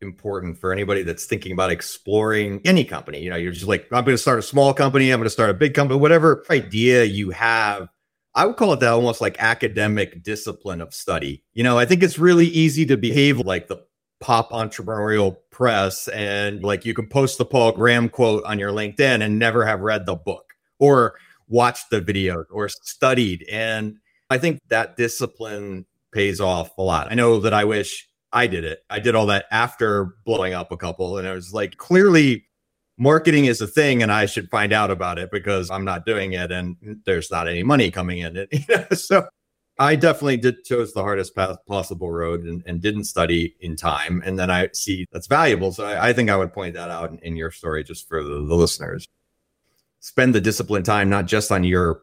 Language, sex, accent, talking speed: English, male, American, 215 wpm